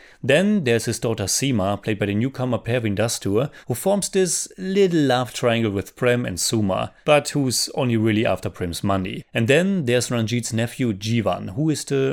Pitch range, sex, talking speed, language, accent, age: 110-155 Hz, male, 185 wpm, English, German, 30-49